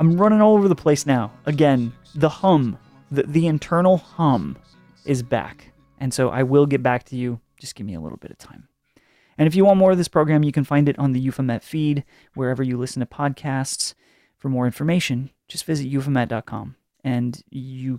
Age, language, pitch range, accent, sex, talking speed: 30-49, English, 130-160 Hz, American, male, 205 wpm